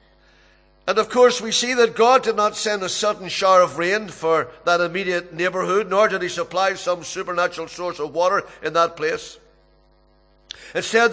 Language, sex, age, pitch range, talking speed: English, male, 60-79, 175-210 Hz, 175 wpm